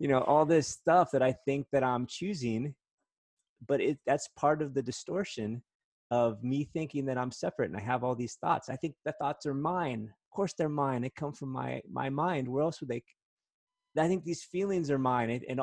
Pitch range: 105-140 Hz